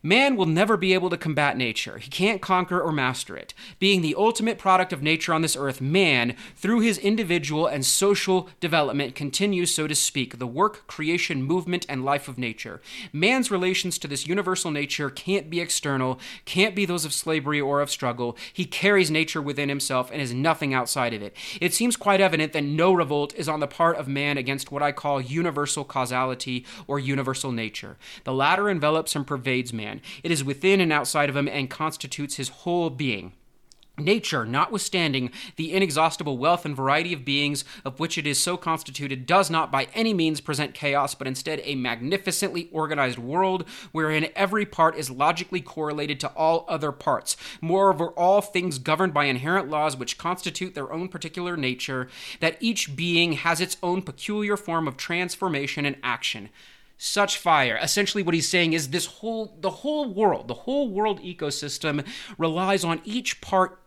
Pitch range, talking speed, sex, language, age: 140-185 Hz, 180 wpm, male, English, 30-49